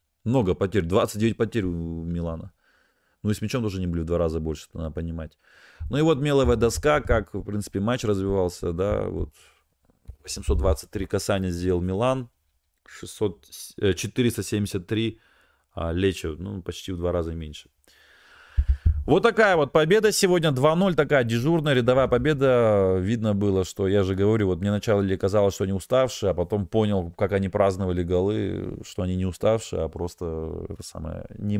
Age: 30-49